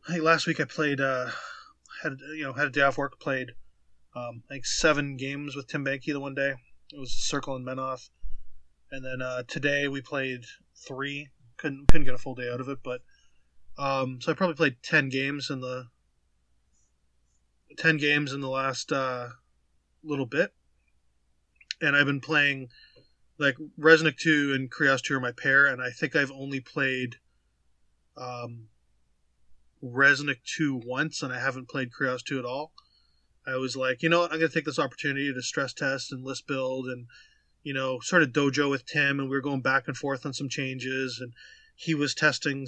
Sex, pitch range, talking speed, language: male, 125-145 Hz, 195 wpm, English